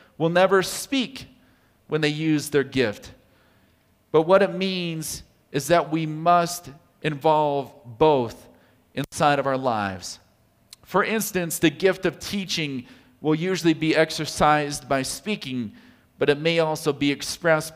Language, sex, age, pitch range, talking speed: English, male, 40-59, 125-155 Hz, 135 wpm